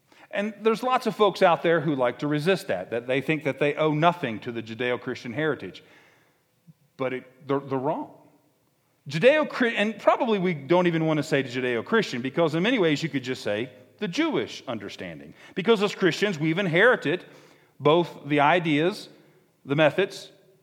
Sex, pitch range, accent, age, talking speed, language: male, 140-195 Hz, American, 50-69, 170 wpm, English